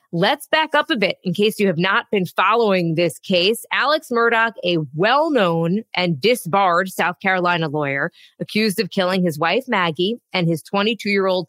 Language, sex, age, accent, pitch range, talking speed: English, female, 20-39, American, 175-225 Hz, 165 wpm